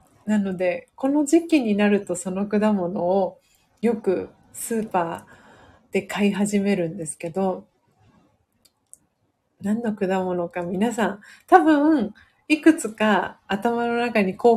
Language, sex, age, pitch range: Japanese, female, 40-59, 190-235 Hz